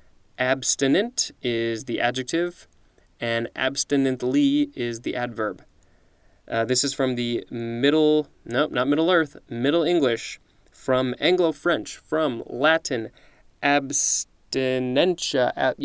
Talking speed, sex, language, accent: 110 wpm, male, English, American